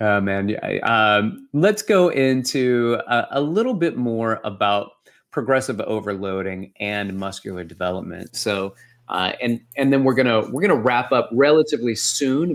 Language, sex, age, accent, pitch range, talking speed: English, male, 30-49, American, 105-125 Hz, 145 wpm